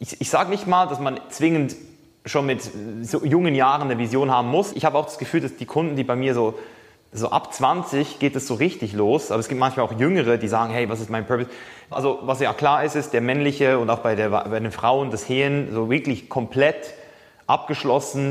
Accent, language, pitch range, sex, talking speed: German, German, 120-145 Hz, male, 235 wpm